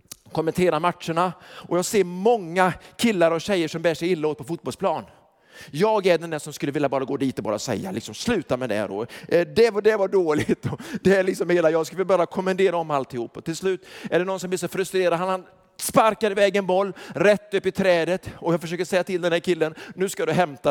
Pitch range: 150-190 Hz